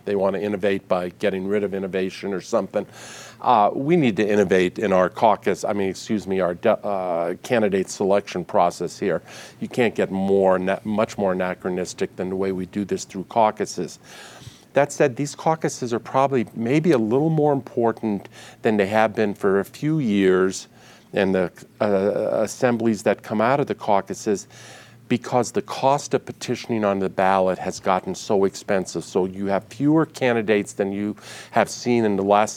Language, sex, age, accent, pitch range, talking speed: English, male, 50-69, American, 95-120 Hz, 180 wpm